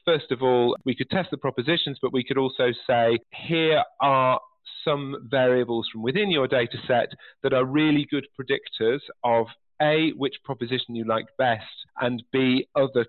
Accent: British